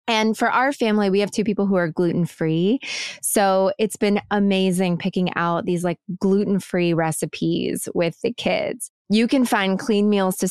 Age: 20-39